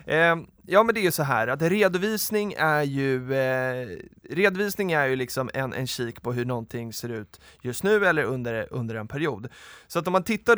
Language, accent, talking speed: Swedish, native, 205 wpm